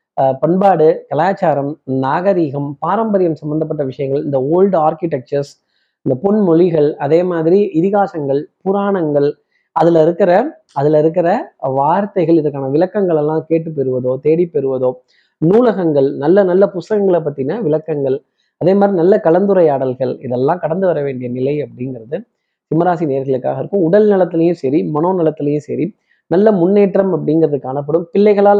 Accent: native